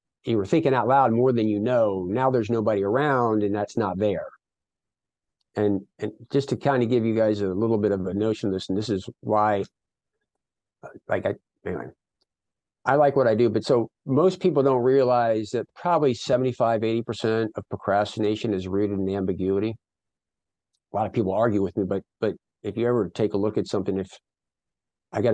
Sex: male